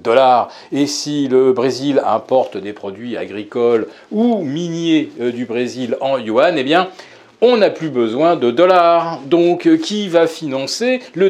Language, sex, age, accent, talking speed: French, male, 40-59, French, 145 wpm